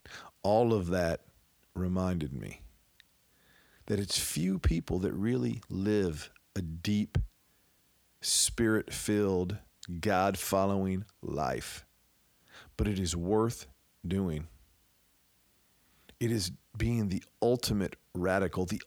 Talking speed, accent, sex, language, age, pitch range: 90 wpm, American, male, English, 50-69, 90-110 Hz